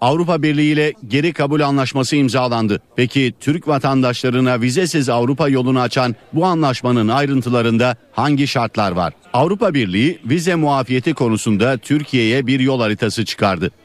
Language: Turkish